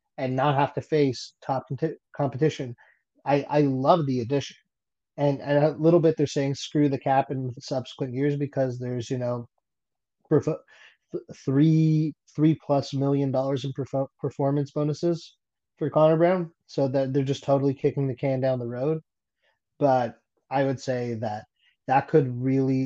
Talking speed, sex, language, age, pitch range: 160 wpm, male, English, 20-39, 130-145 Hz